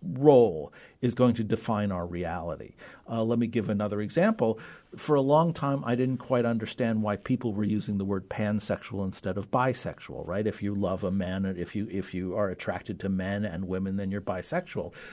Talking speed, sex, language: 195 wpm, male, English